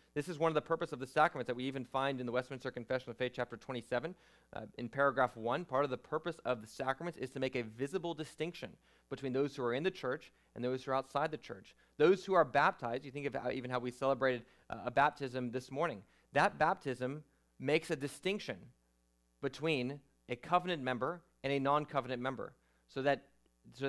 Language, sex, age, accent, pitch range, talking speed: English, male, 30-49, American, 130-155 Hz, 215 wpm